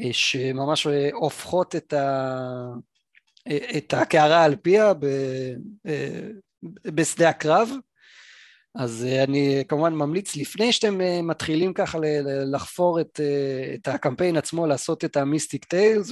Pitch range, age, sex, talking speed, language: 130-170 Hz, 20-39, male, 105 wpm, Hebrew